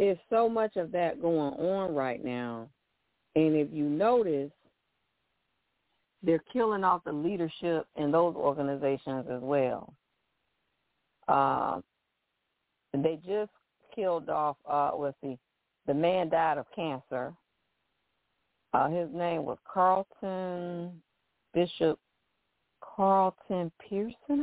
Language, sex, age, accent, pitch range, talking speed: English, female, 40-59, American, 150-210 Hz, 105 wpm